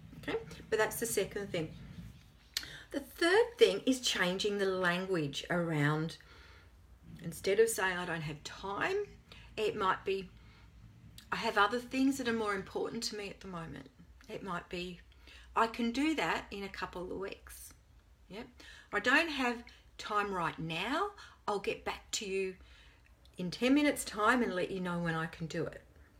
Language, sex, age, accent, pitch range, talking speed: English, female, 40-59, Australian, 165-260 Hz, 170 wpm